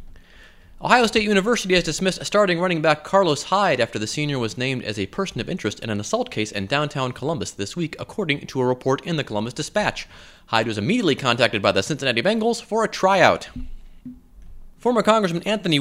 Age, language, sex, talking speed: 30-49, English, male, 195 wpm